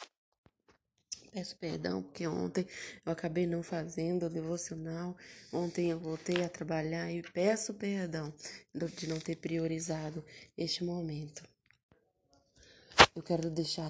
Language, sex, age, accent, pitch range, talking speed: Portuguese, female, 20-39, Brazilian, 155-180 Hz, 115 wpm